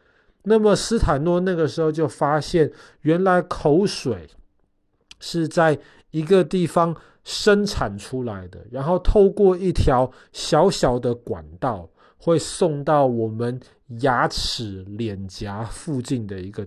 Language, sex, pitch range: Chinese, male, 110-170 Hz